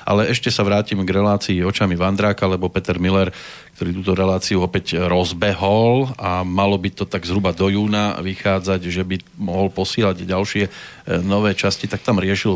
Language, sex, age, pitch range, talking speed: Slovak, male, 40-59, 95-105 Hz, 165 wpm